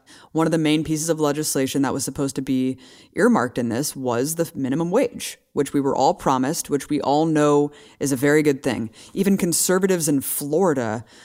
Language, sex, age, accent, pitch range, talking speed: English, female, 20-39, American, 135-170 Hz, 195 wpm